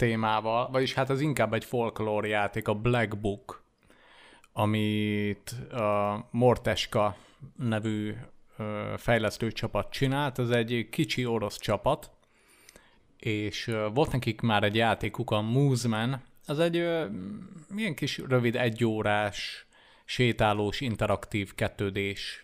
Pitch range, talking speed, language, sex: 105-125 Hz, 105 wpm, Hungarian, male